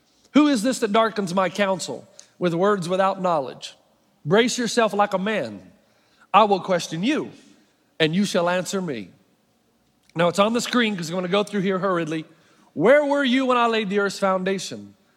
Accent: American